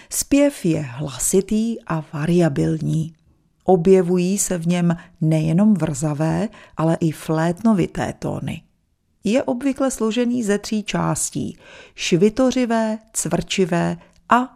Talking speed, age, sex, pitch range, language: 100 wpm, 40-59, female, 165-225 Hz, Czech